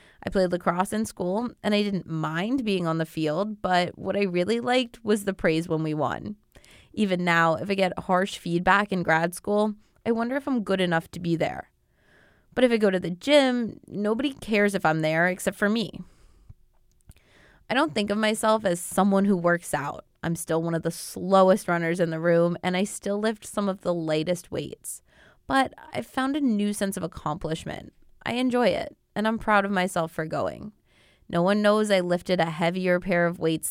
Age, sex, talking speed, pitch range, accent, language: 20-39, female, 205 wpm, 170-215 Hz, American, English